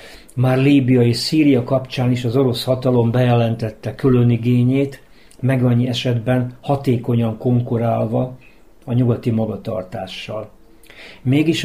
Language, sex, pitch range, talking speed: Hungarian, male, 115-135 Hz, 110 wpm